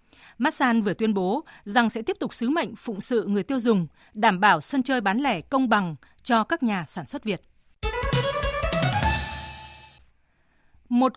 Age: 20-39